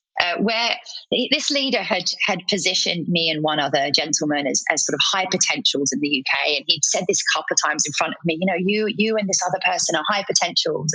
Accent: British